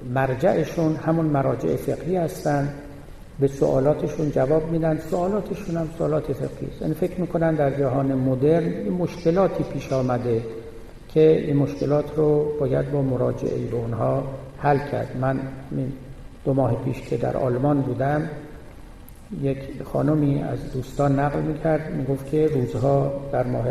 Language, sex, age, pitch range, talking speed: Persian, male, 60-79, 130-155 Hz, 135 wpm